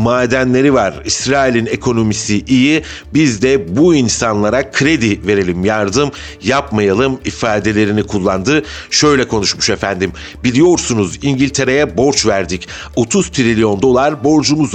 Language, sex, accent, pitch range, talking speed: Turkish, male, native, 105-135 Hz, 105 wpm